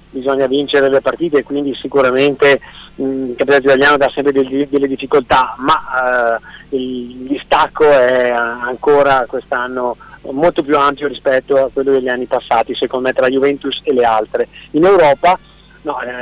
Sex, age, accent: male, 30-49, native